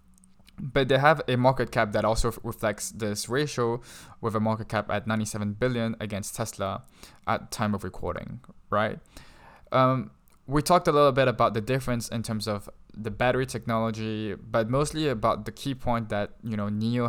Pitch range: 105-120 Hz